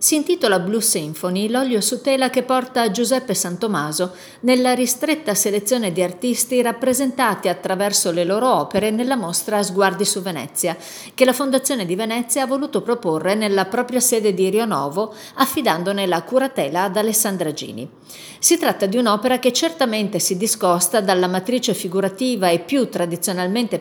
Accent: native